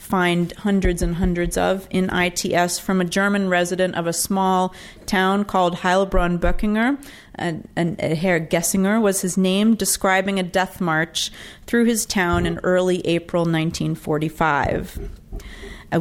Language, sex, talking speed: English, female, 140 wpm